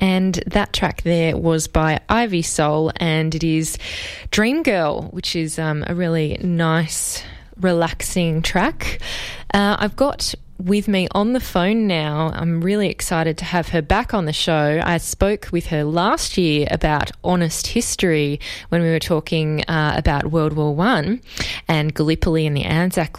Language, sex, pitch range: English, female, 160-195 Hz